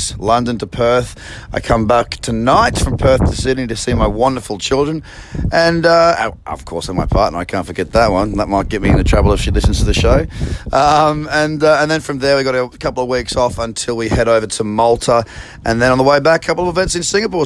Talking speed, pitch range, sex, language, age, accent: 245 wpm, 100-145 Hz, male, English, 30-49, Australian